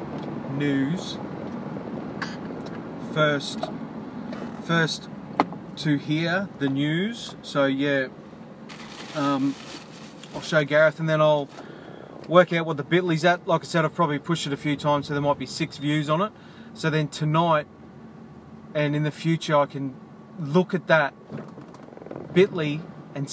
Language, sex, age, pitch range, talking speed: English, male, 30-49, 145-170 Hz, 140 wpm